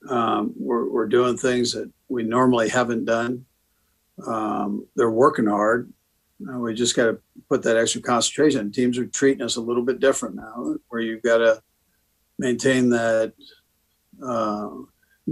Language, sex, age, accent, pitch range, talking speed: English, male, 50-69, American, 115-130 Hz, 150 wpm